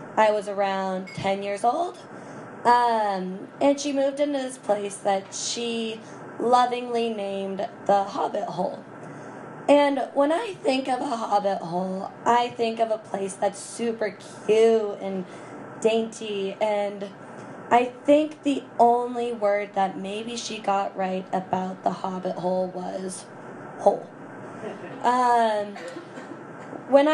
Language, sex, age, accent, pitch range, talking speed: English, female, 10-29, American, 195-240 Hz, 125 wpm